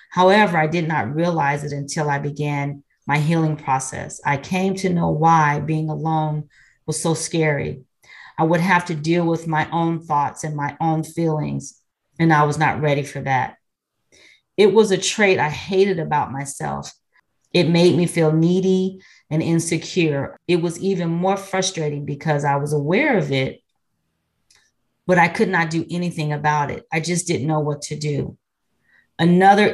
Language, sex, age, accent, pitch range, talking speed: English, female, 40-59, American, 150-175 Hz, 170 wpm